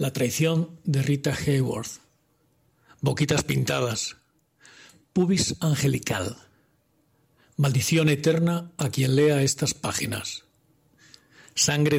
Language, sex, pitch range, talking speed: Spanish, male, 135-160 Hz, 85 wpm